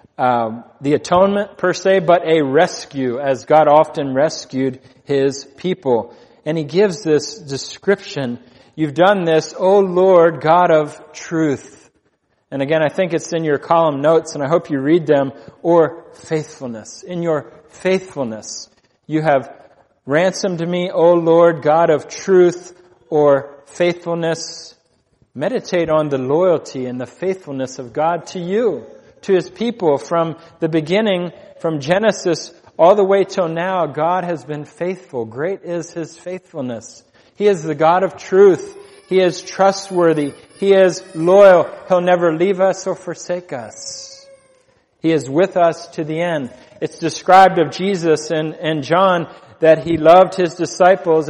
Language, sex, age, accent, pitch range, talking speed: English, male, 40-59, American, 145-185 Hz, 150 wpm